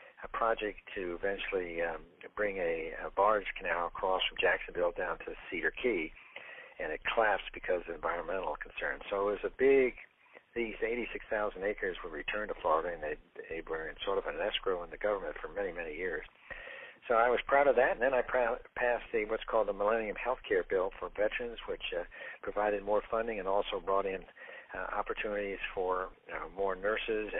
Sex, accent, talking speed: male, American, 190 wpm